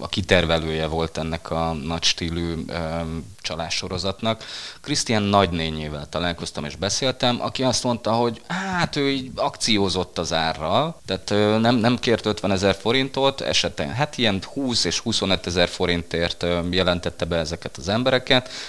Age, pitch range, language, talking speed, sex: 20-39, 80-115 Hz, Hungarian, 140 wpm, male